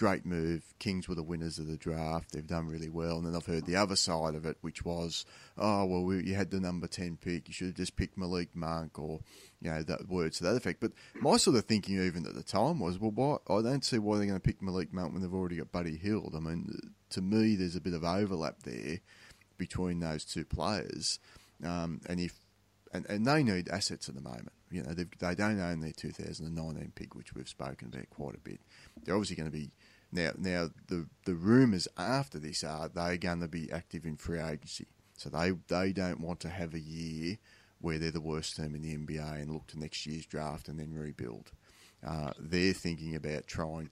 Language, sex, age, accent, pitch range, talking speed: English, male, 30-49, Australian, 80-95 Hz, 230 wpm